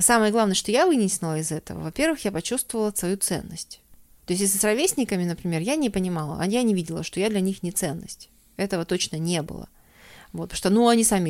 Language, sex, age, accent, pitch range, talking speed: Russian, female, 30-49, native, 170-215 Hz, 210 wpm